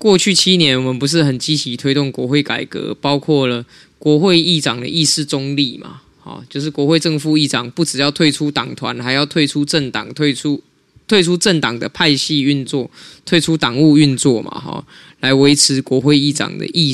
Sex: male